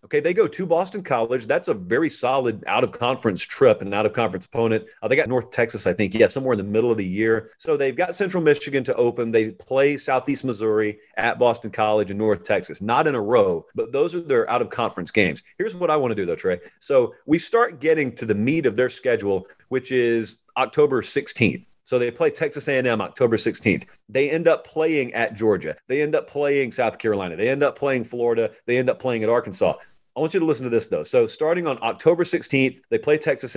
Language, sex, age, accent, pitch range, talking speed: English, male, 30-49, American, 115-185 Hz, 225 wpm